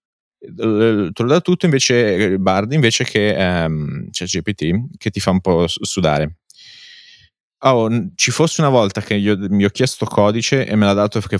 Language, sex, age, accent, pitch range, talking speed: Italian, male, 30-49, native, 95-115 Hz, 170 wpm